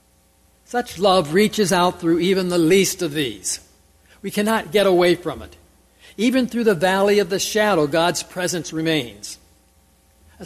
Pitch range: 130-205 Hz